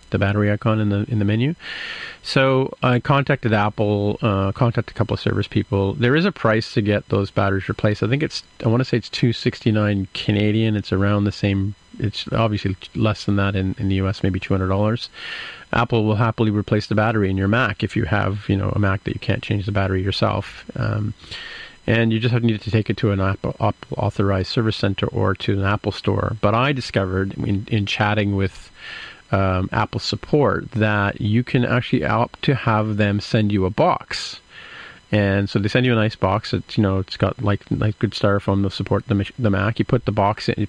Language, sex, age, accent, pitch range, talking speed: English, male, 40-59, American, 100-115 Hz, 220 wpm